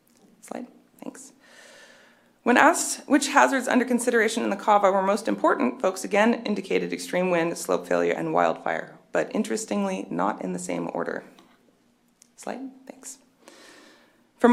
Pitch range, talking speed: 165-260 Hz, 135 wpm